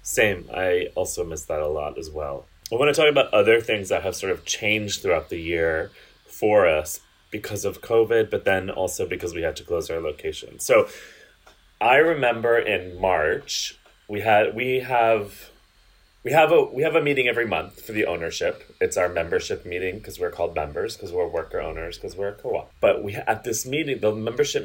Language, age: English, 30-49